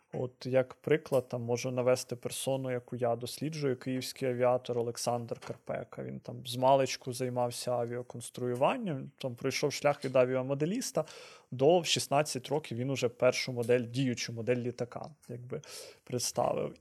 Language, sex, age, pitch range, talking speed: Ukrainian, male, 20-39, 125-155 Hz, 135 wpm